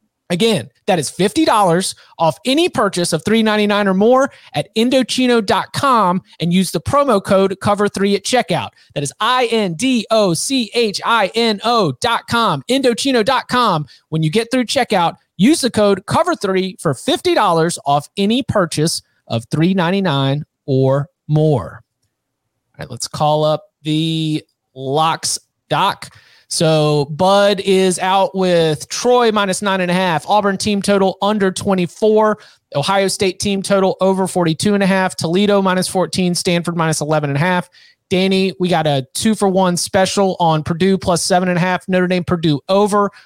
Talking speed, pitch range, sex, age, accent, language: 155 wpm, 160-210 Hz, male, 30-49, American, English